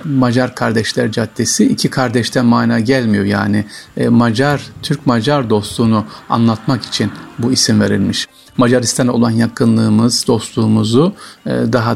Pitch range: 115-140 Hz